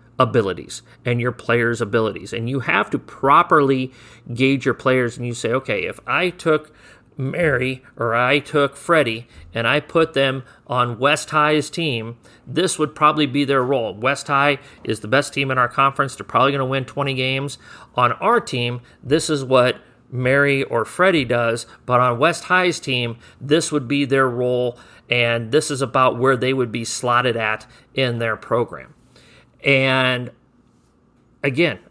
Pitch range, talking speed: 120-140 Hz, 170 wpm